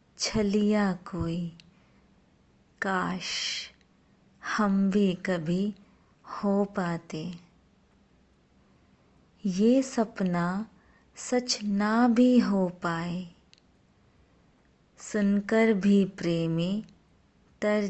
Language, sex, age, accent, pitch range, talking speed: Hindi, female, 30-49, native, 170-210 Hz, 65 wpm